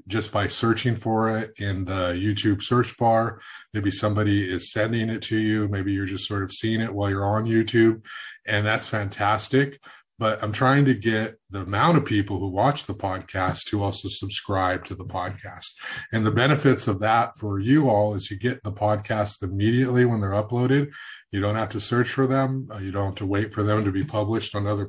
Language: English